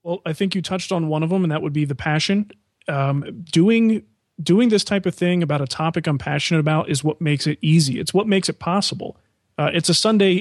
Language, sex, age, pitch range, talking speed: English, male, 30-49, 150-175 Hz, 240 wpm